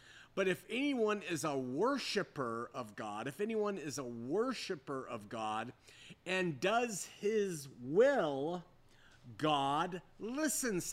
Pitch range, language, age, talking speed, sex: 140-205 Hz, English, 40-59, 115 wpm, male